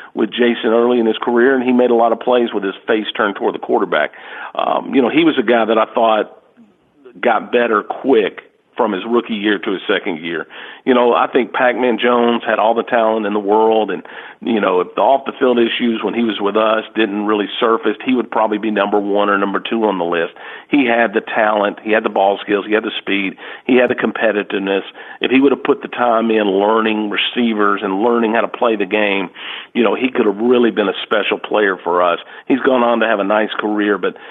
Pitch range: 105-125 Hz